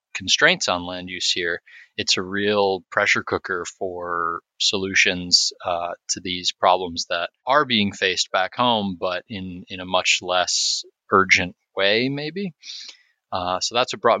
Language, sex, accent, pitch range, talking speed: English, male, American, 90-105 Hz, 150 wpm